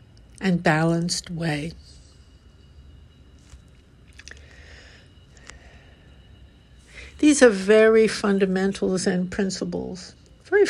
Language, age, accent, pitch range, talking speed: English, 60-79, American, 160-215 Hz, 55 wpm